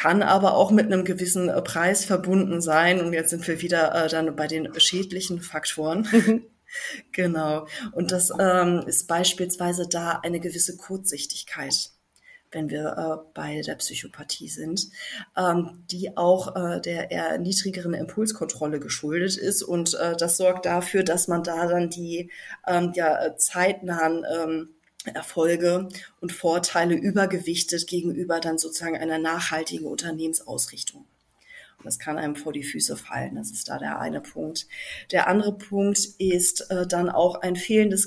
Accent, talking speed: German, 150 wpm